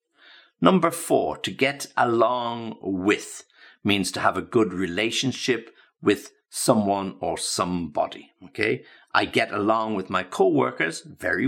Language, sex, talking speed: English, male, 125 wpm